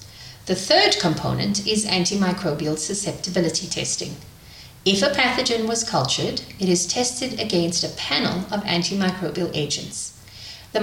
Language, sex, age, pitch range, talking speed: English, female, 40-59, 150-210 Hz, 120 wpm